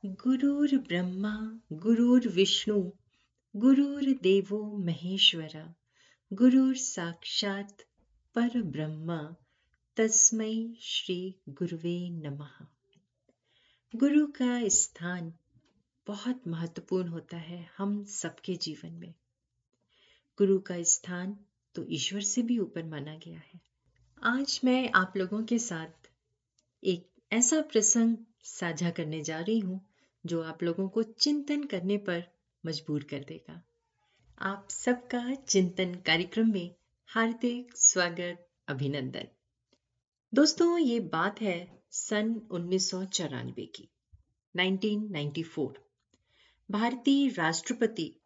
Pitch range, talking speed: 170-230 Hz, 100 wpm